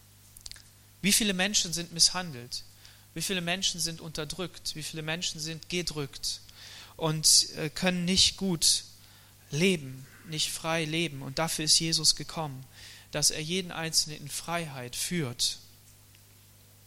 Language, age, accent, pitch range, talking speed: German, 30-49, German, 120-190 Hz, 125 wpm